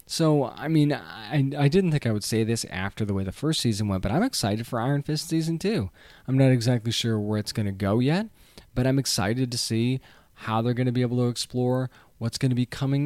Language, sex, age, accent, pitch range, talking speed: English, male, 20-39, American, 110-140 Hz, 250 wpm